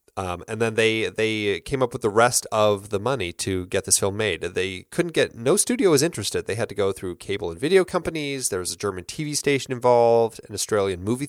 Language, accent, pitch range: English, American, 95-120 Hz